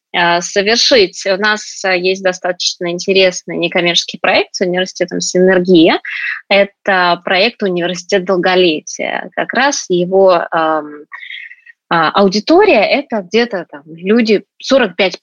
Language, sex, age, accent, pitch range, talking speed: Russian, female, 20-39, native, 175-220 Hz, 95 wpm